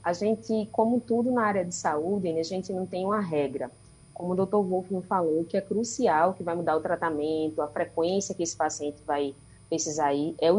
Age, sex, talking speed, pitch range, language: 20-39, female, 210 wpm, 165-205 Hz, Portuguese